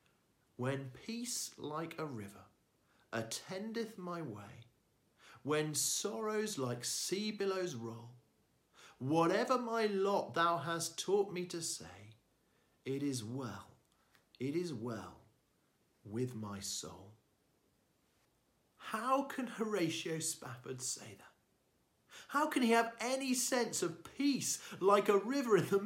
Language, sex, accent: English, male, British